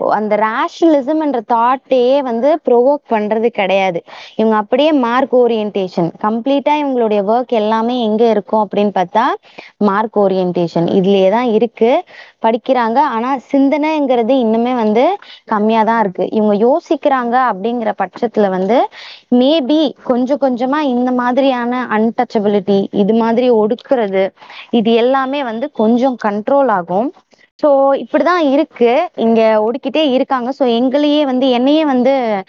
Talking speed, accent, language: 105 wpm, native, Tamil